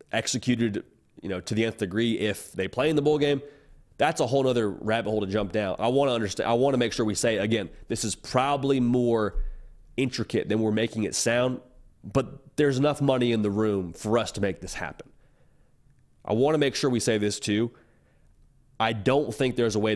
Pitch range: 105-125 Hz